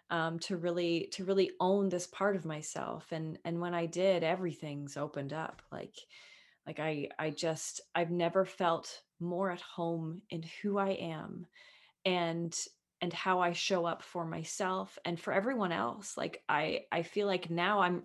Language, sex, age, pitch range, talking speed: English, female, 20-39, 170-205 Hz, 175 wpm